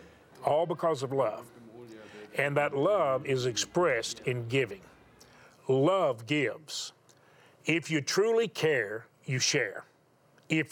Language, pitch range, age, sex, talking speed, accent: English, 125-160 Hz, 40-59, male, 110 wpm, American